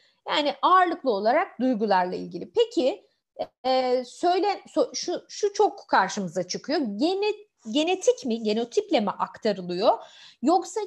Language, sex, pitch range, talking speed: Turkish, female, 205-310 Hz, 115 wpm